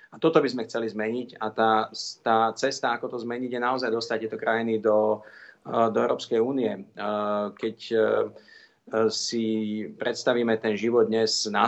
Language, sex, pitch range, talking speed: Slovak, male, 105-115 Hz, 150 wpm